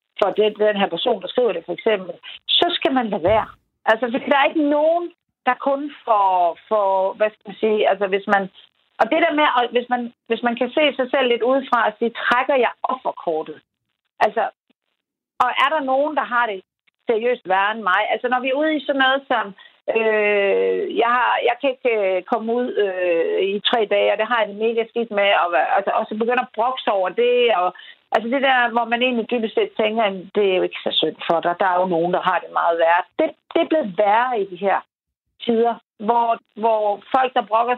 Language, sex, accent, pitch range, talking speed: Danish, female, native, 200-265 Hz, 225 wpm